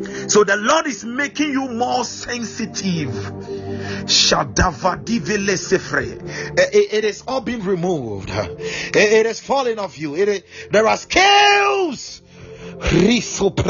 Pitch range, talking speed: 175-265 Hz, 85 wpm